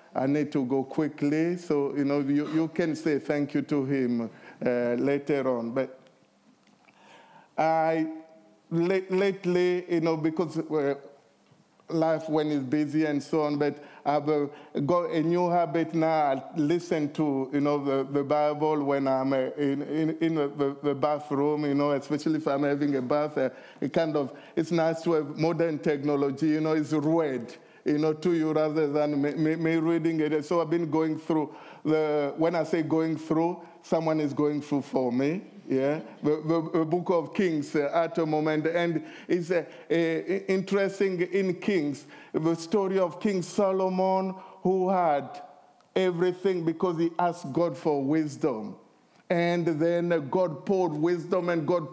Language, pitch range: English, 145-175 Hz